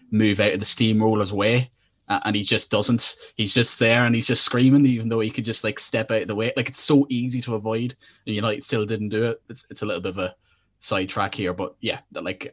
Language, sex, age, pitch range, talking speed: English, male, 20-39, 100-120 Hz, 255 wpm